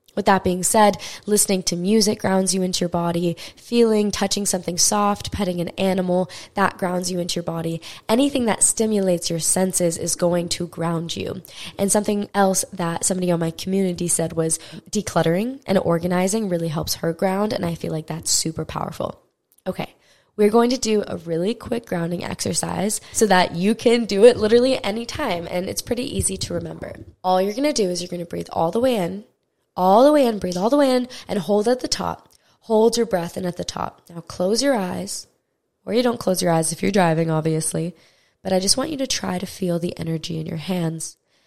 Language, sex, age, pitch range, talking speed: English, female, 10-29, 170-210 Hz, 210 wpm